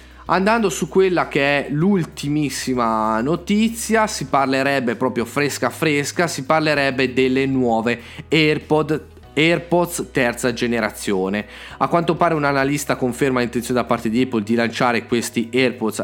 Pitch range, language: 120-160 Hz, Italian